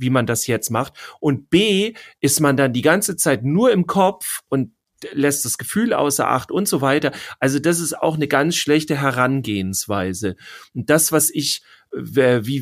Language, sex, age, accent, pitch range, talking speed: German, male, 40-59, German, 125-155 Hz, 180 wpm